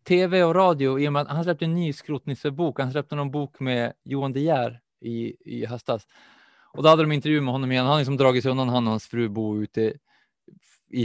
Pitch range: 115-150 Hz